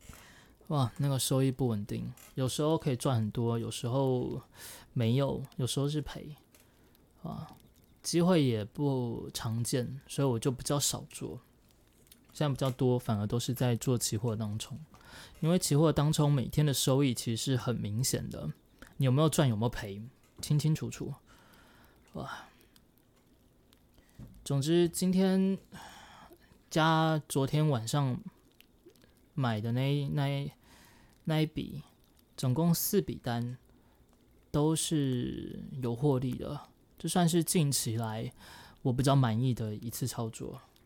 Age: 20-39